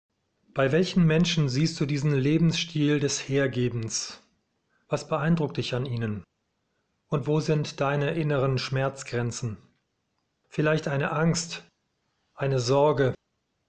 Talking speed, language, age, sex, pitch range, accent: 110 wpm, German, 40-59, male, 135-160 Hz, German